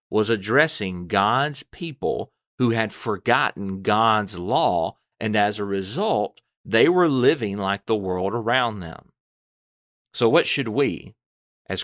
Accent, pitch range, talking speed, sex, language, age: American, 95-120 Hz, 130 wpm, male, English, 40-59